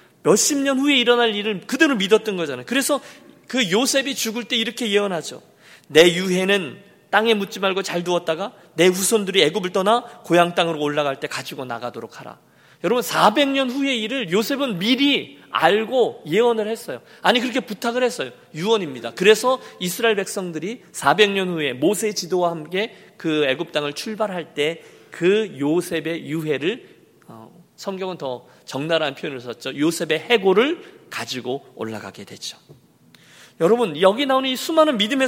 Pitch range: 165-230 Hz